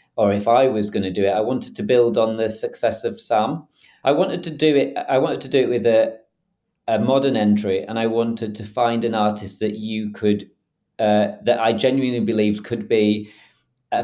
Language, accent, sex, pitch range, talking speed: English, British, male, 105-120 Hz, 215 wpm